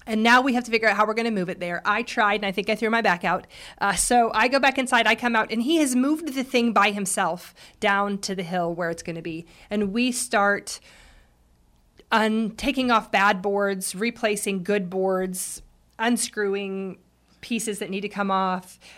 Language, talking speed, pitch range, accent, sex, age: English, 215 wpm, 185-225 Hz, American, female, 40-59